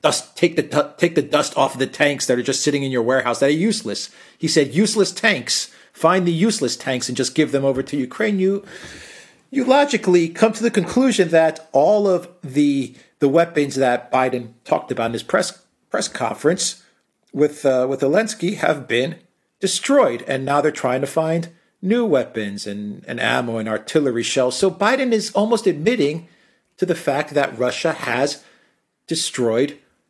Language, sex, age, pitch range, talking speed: English, male, 40-59, 120-170 Hz, 175 wpm